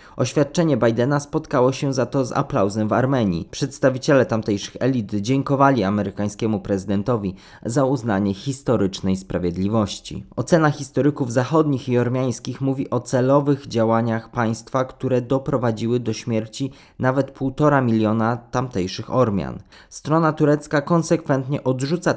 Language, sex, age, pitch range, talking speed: Polish, male, 20-39, 110-140 Hz, 115 wpm